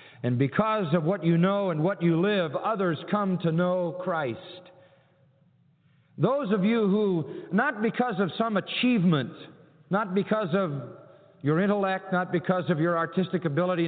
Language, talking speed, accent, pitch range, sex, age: English, 150 wpm, American, 140-180 Hz, male, 50-69